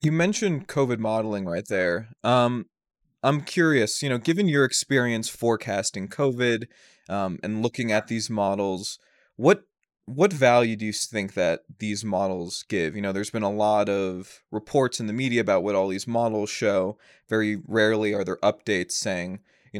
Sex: male